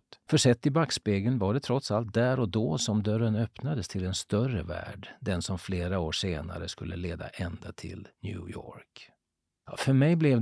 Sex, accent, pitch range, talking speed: male, native, 90-115 Hz, 185 wpm